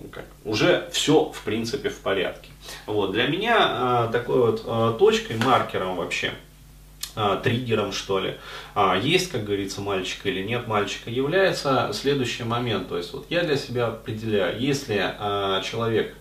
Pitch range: 100-125 Hz